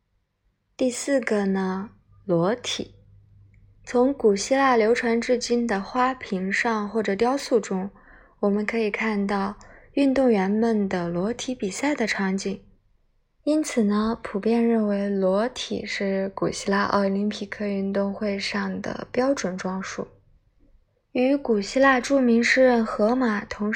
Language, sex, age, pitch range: Chinese, female, 20-39, 195-235 Hz